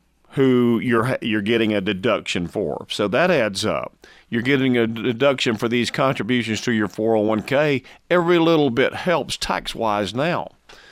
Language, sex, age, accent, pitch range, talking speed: English, male, 40-59, American, 105-135 Hz, 150 wpm